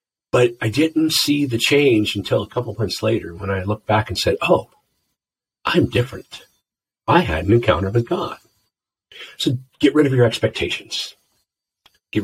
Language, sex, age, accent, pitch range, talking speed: English, male, 50-69, American, 110-165 Hz, 165 wpm